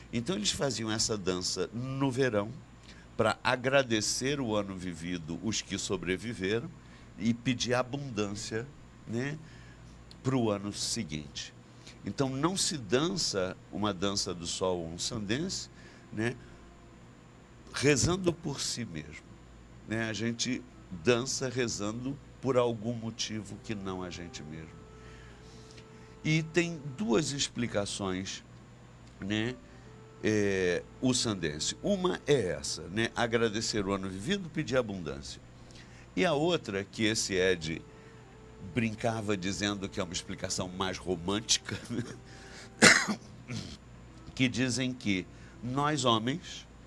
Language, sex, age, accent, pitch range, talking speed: Portuguese, male, 60-79, Brazilian, 95-125 Hz, 115 wpm